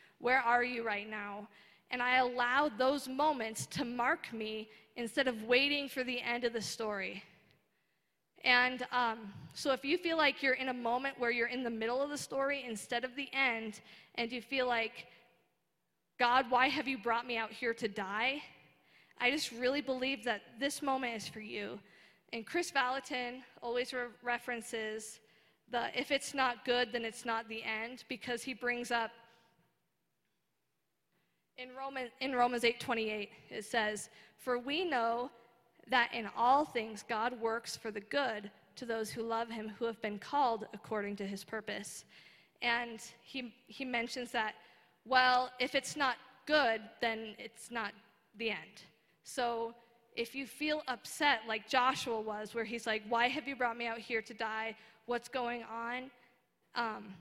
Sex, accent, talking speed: female, American, 165 wpm